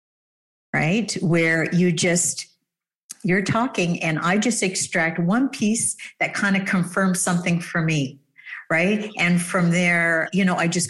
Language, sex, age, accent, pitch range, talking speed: English, female, 50-69, American, 155-185 Hz, 150 wpm